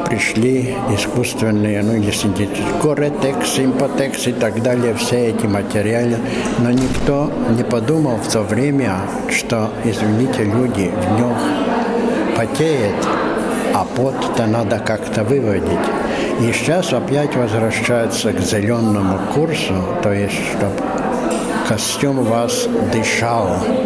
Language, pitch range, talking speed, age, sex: Russian, 105-130 Hz, 110 wpm, 60-79, male